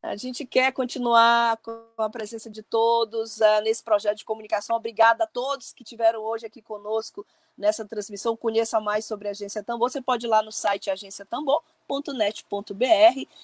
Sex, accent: female, Brazilian